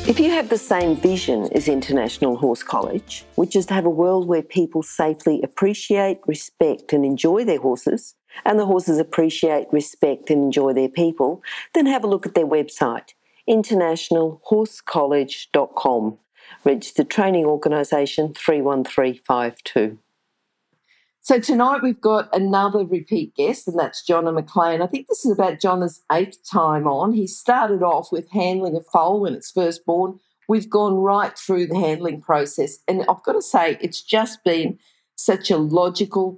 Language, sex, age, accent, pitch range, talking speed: English, female, 50-69, Australian, 155-200 Hz, 155 wpm